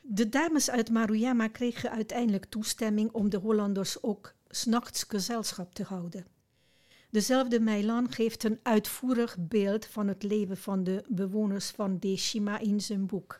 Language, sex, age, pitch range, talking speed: Dutch, female, 60-79, 195-235 Hz, 145 wpm